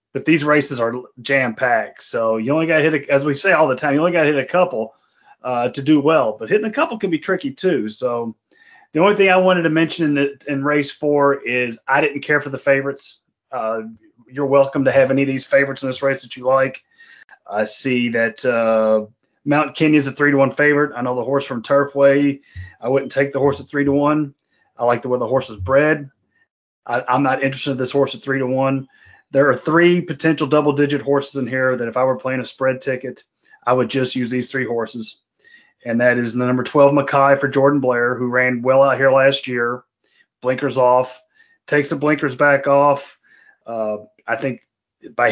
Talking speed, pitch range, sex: 215 wpm, 125-145 Hz, male